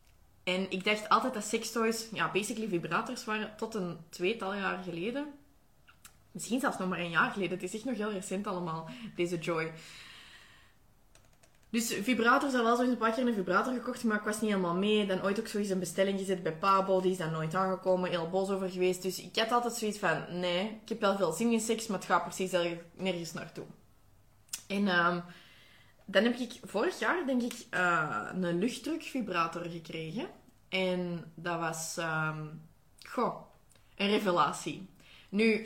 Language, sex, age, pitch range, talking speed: Dutch, female, 20-39, 175-225 Hz, 180 wpm